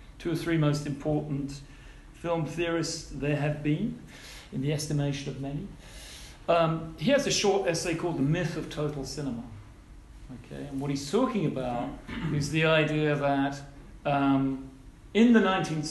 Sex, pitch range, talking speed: male, 130-165 Hz, 155 wpm